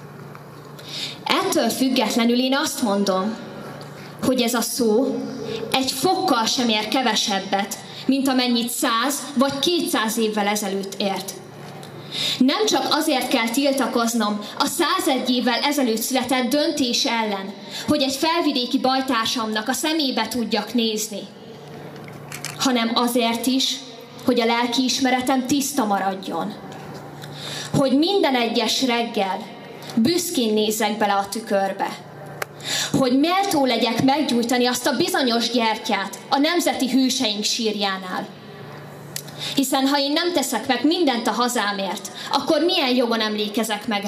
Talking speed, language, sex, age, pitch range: 115 wpm, Hungarian, female, 20-39, 205-265 Hz